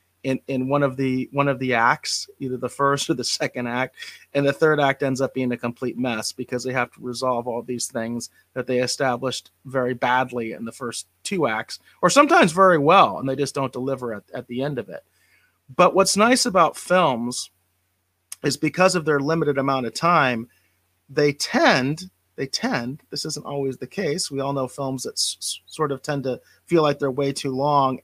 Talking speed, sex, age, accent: 210 wpm, male, 30-49, American